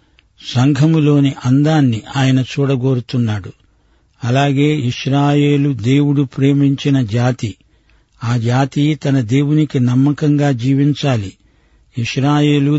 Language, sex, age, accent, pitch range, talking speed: Telugu, male, 50-69, native, 125-145 Hz, 75 wpm